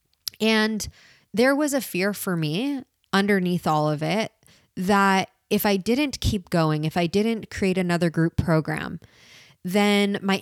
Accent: American